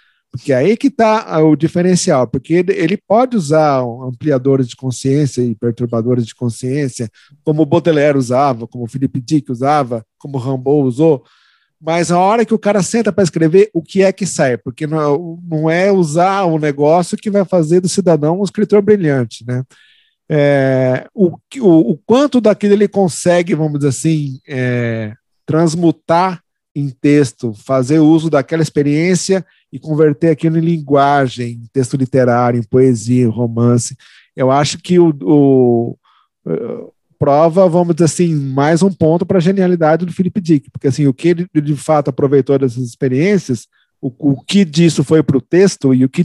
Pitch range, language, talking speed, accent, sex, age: 130-175 Hz, Portuguese, 165 wpm, Brazilian, male, 40-59